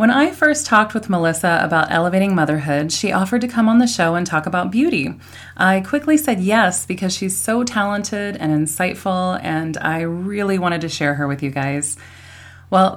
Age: 30-49